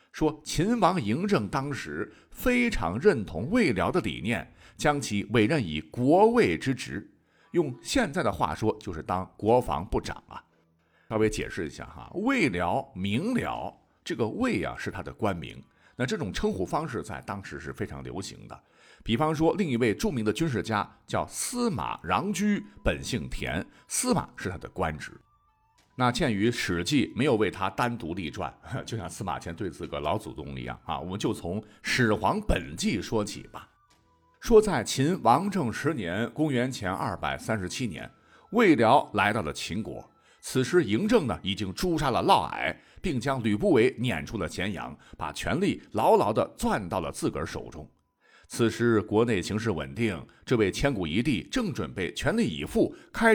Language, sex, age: Chinese, male, 50-69